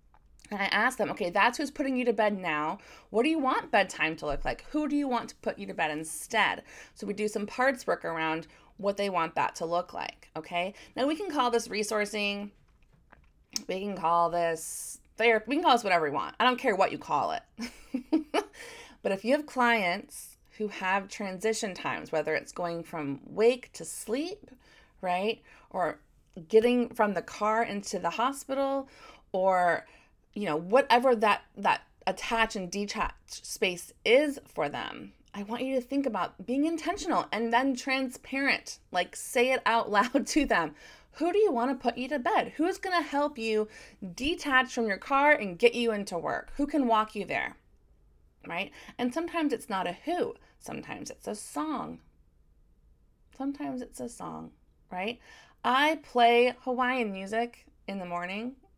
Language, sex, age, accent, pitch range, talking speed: English, female, 30-49, American, 190-260 Hz, 180 wpm